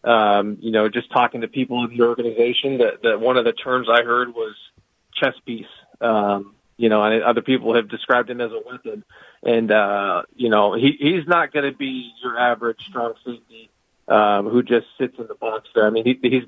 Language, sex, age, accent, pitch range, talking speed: English, male, 40-59, American, 115-135 Hz, 215 wpm